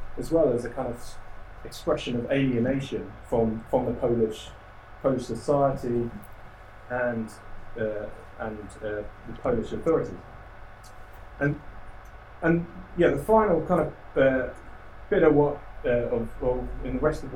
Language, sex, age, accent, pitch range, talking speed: English, male, 30-49, British, 105-145 Hz, 140 wpm